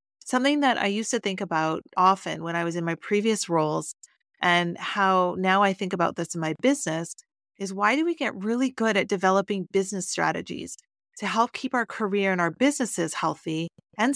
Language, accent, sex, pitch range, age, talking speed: English, American, female, 170-215 Hz, 30-49, 195 wpm